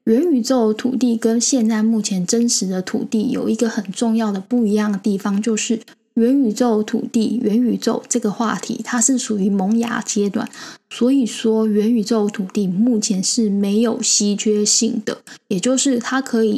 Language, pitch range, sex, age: Chinese, 210-240 Hz, female, 10-29